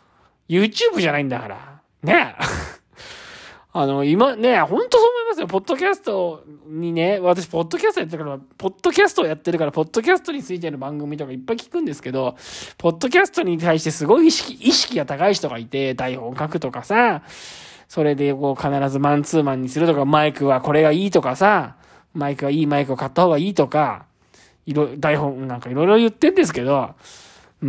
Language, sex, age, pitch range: Japanese, male, 20-39, 140-235 Hz